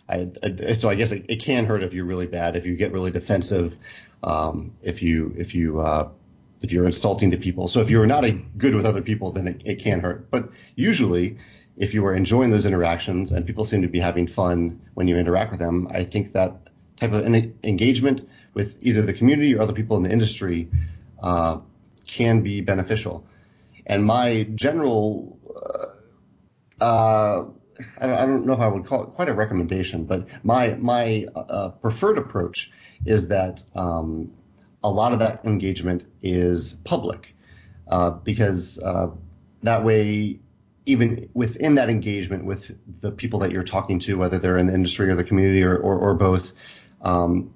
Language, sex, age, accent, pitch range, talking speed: English, male, 40-59, American, 90-110 Hz, 180 wpm